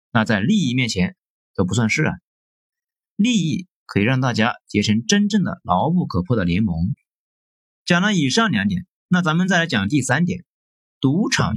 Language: Chinese